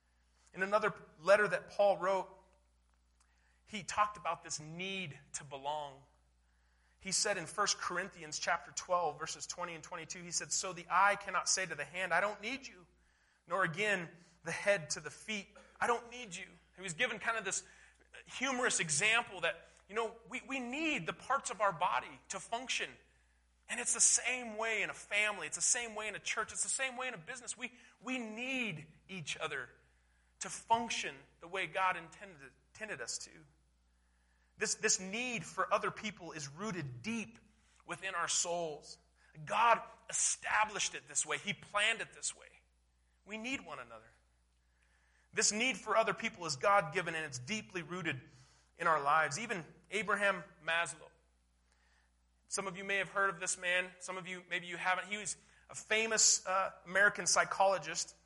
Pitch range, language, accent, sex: 155-215 Hz, English, American, male